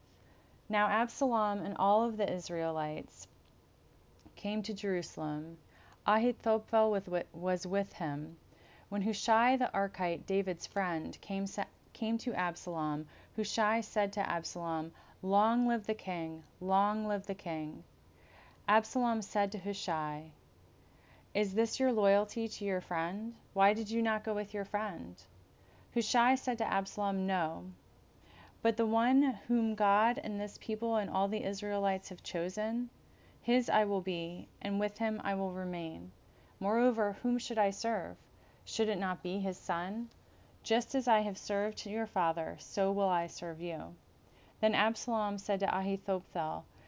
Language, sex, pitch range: English, female, 165-220 Hz